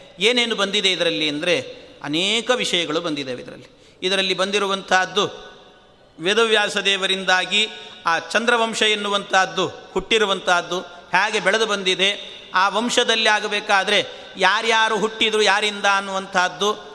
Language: Kannada